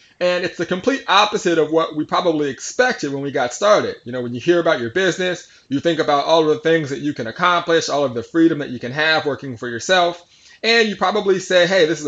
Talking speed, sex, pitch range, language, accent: 255 wpm, male, 140-180 Hz, English, American